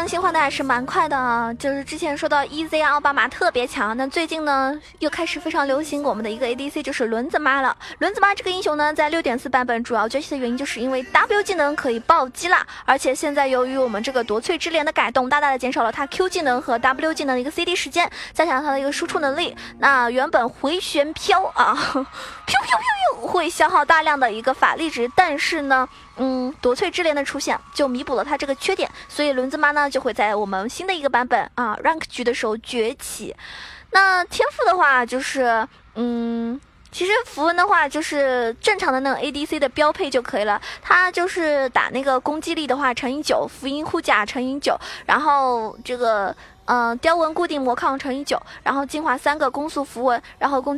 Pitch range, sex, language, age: 255-325 Hz, female, Chinese, 20-39